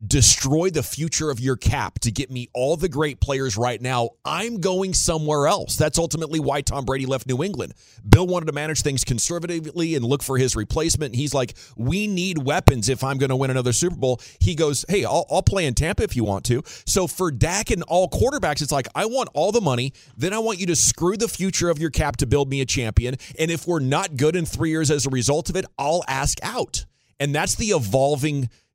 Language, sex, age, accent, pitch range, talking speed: English, male, 30-49, American, 125-160 Hz, 235 wpm